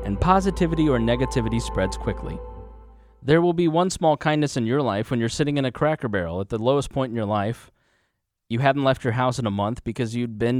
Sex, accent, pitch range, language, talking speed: male, American, 110-145 Hz, English, 225 wpm